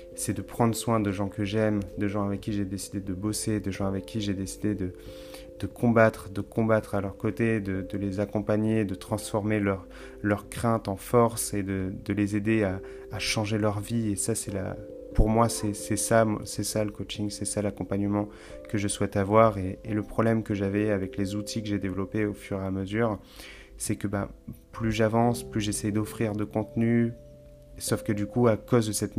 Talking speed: 220 wpm